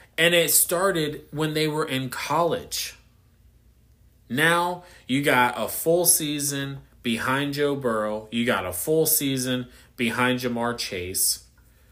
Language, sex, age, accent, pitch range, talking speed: English, male, 30-49, American, 110-155 Hz, 125 wpm